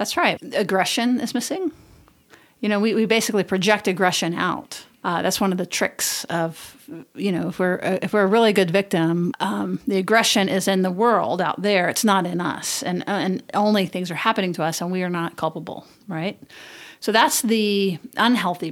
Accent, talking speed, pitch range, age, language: American, 195 wpm, 180-210 Hz, 40-59, English